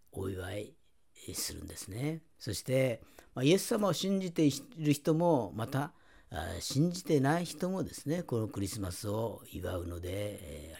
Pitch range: 105-160 Hz